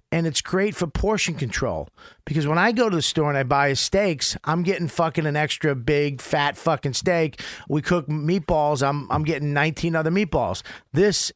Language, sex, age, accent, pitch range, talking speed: English, male, 40-59, American, 135-180 Hz, 190 wpm